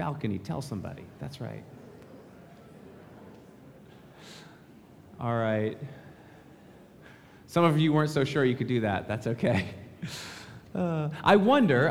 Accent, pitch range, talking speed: American, 115-165 Hz, 110 wpm